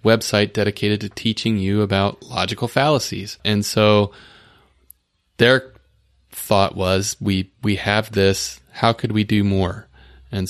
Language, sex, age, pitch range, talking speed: English, male, 30-49, 95-115 Hz, 130 wpm